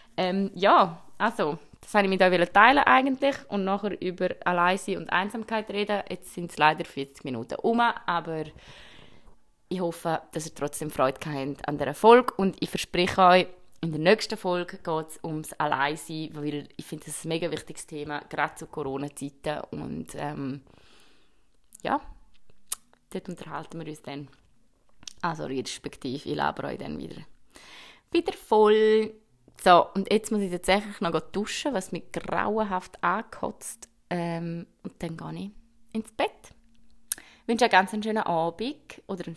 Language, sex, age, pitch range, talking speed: German, female, 20-39, 155-215 Hz, 160 wpm